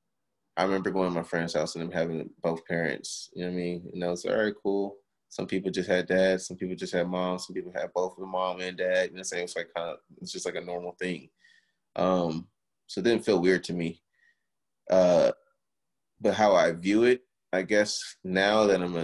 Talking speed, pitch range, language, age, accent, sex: 245 wpm, 85-100 Hz, English, 20-39, American, male